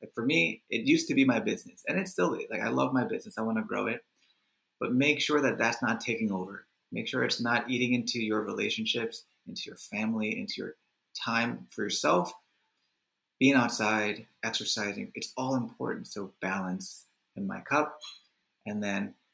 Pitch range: 110-150 Hz